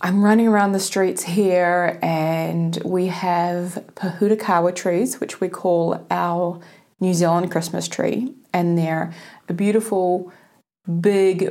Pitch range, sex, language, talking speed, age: 170-205 Hz, female, English, 125 wpm, 30-49